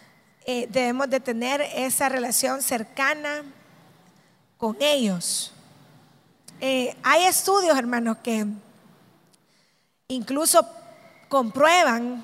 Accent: American